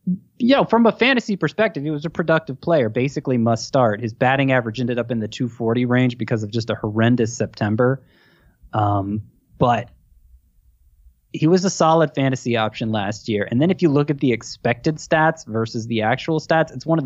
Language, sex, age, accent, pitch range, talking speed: English, male, 20-39, American, 115-150 Hz, 195 wpm